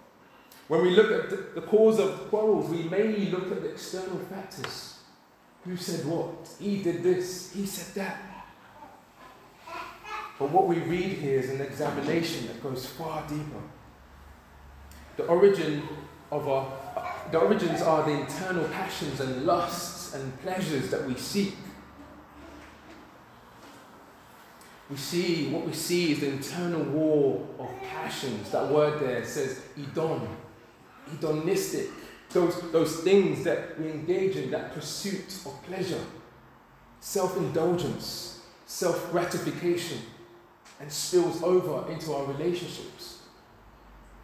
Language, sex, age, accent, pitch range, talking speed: English, male, 20-39, British, 155-200 Hz, 120 wpm